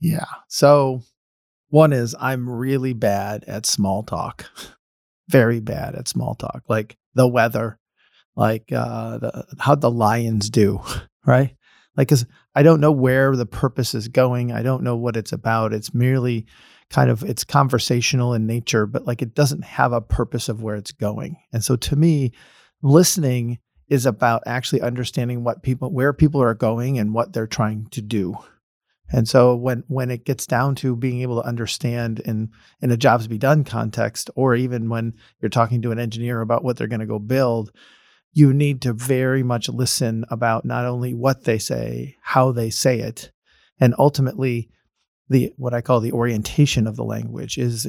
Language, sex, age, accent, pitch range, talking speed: English, male, 40-59, American, 115-130 Hz, 180 wpm